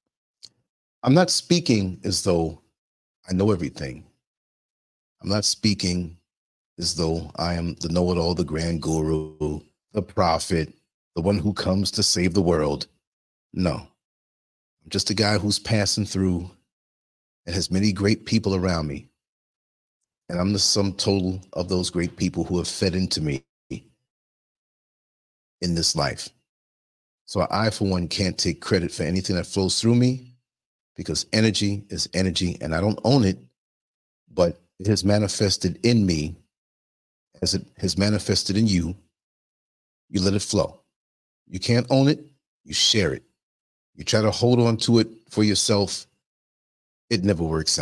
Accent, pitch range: American, 85-110 Hz